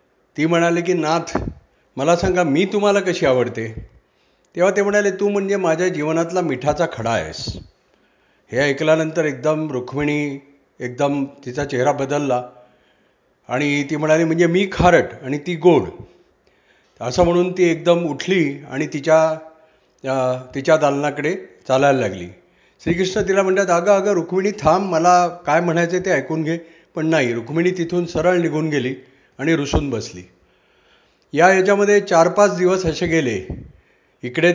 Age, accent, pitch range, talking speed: 50-69, native, 140-175 Hz, 135 wpm